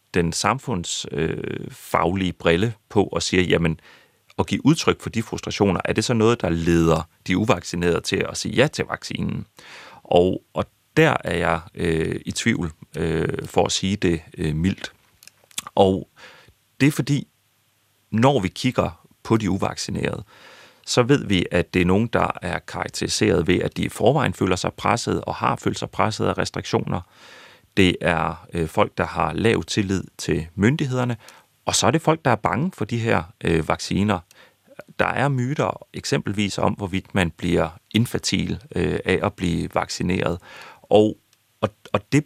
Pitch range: 85-115 Hz